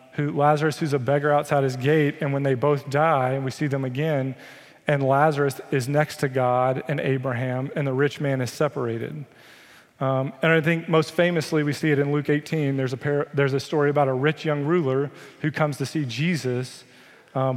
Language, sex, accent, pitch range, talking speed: English, male, American, 130-155 Hz, 205 wpm